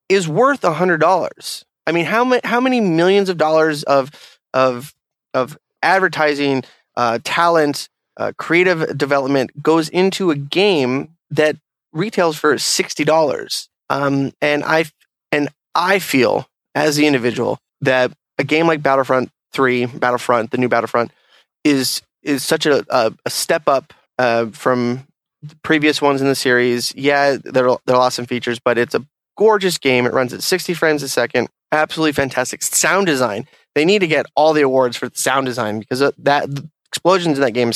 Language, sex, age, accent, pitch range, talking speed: English, male, 20-39, American, 130-160 Hz, 170 wpm